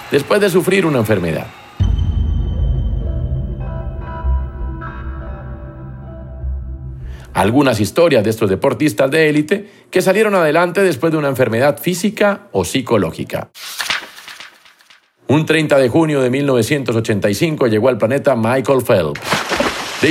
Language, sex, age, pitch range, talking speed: Spanish, male, 50-69, 105-165 Hz, 100 wpm